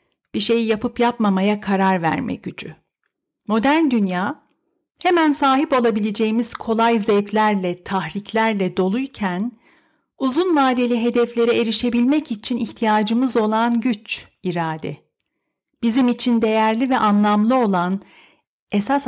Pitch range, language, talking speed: 195-260 Hz, Turkish, 100 wpm